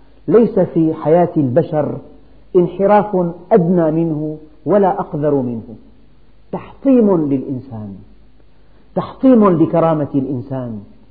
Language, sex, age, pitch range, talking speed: Arabic, male, 50-69, 140-190 Hz, 80 wpm